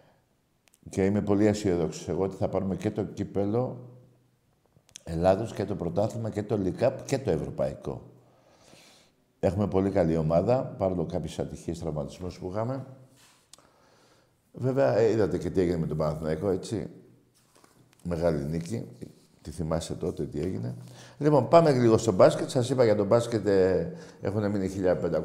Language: Greek